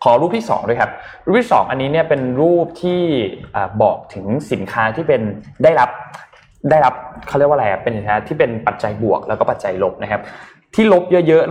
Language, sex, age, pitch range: Thai, male, 20-39, 110-150 Hz